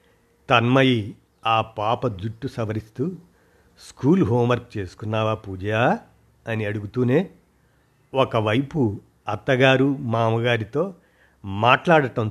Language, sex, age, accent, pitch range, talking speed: Telugu, male, 50-69, native, 105-125 Hz, 80 wpm